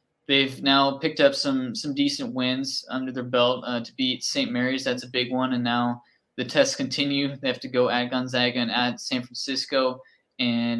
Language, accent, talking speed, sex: English, American, 200 wpm, male